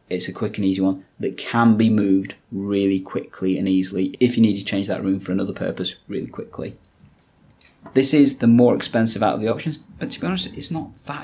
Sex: male